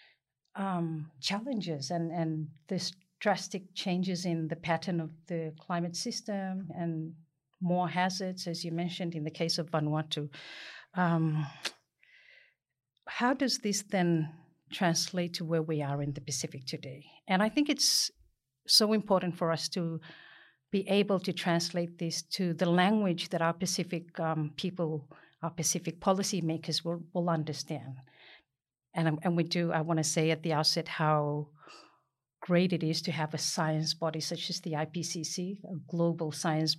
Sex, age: female, 50-69